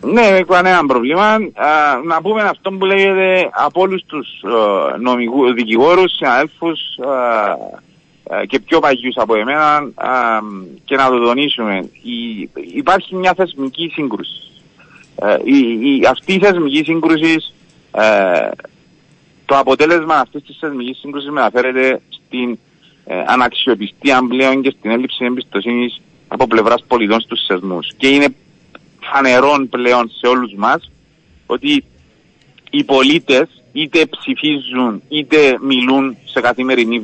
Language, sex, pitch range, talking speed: Greek, male, 125-170 Hz, 105 wpm